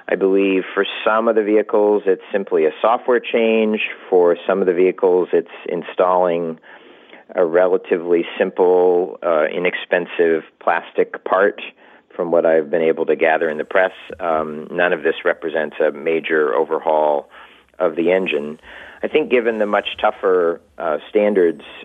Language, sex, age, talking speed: English, male, 40-59, 150 wpm